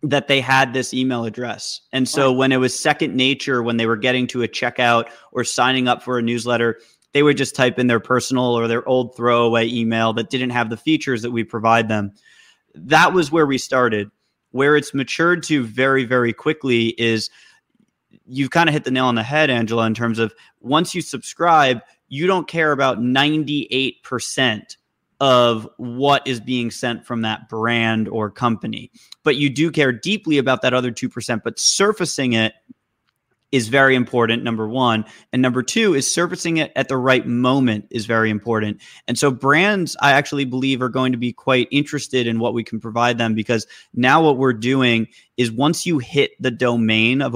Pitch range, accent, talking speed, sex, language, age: 115-135 Hz, American, 190 wpm, male, English, 20-39